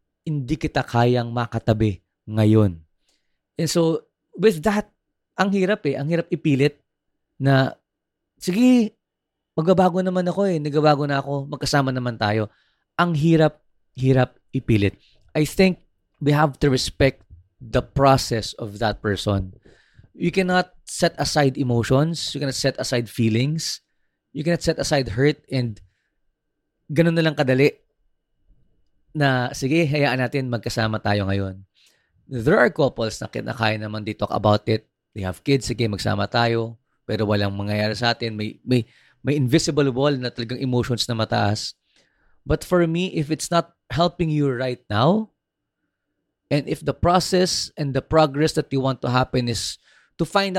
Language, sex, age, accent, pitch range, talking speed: Filipino, male, 20-39, native, 115-160 Hz, 145 wpm